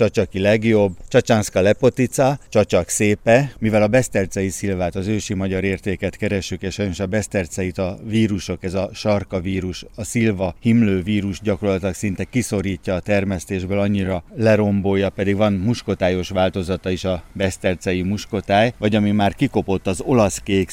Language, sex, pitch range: Hungarian, male, 95-105 Hz